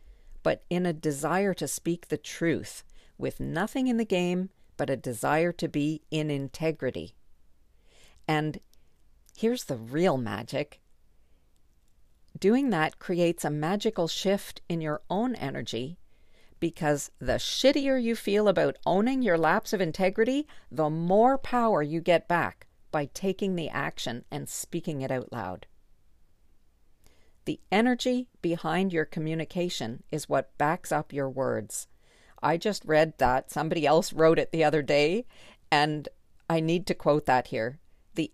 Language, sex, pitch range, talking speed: English, female, 130-185 Hz, 140 wpm